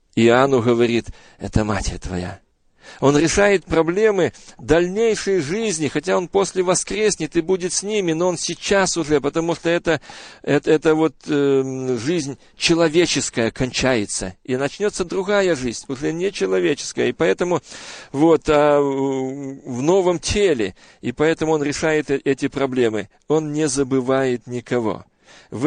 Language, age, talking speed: Russian, 40-59, 130 wpm